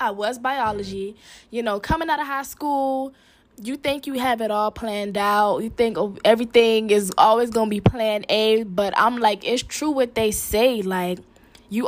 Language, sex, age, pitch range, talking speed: English, female, 10-29, 200-235 Hz, 190 wpm